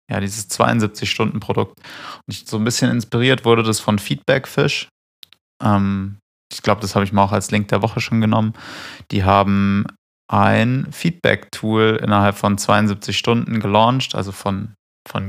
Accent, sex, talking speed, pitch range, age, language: German, male, 150 wpm, 100-120 Hz, 20-39, German